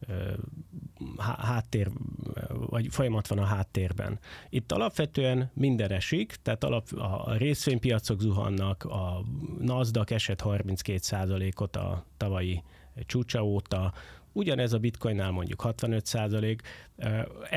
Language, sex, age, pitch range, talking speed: Hungarian, male, 30-49, 100-125 Hz, 90 wpm